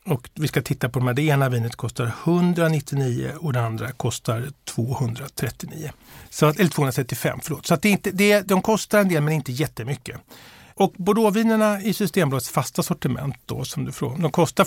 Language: Swedish